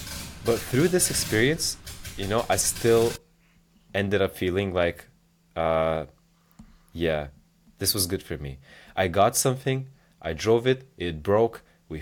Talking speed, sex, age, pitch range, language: 140 wpm, male, 20-39, 90-125 Hz, English